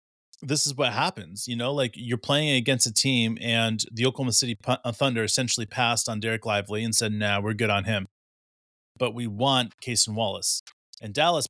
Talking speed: 205 wpm